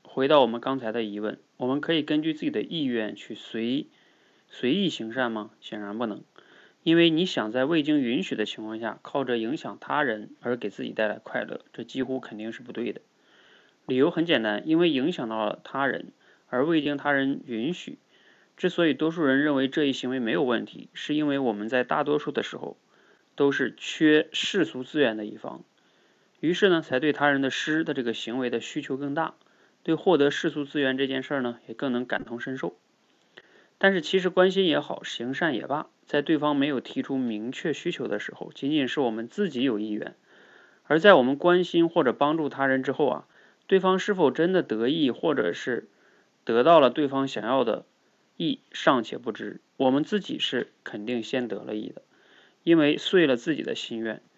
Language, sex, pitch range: Chinese, male, 125-165 Hz